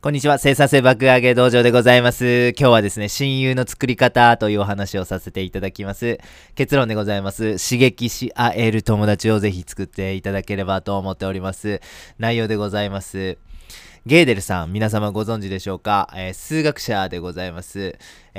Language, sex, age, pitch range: Japanese, male, 20-39, 100-140 Hz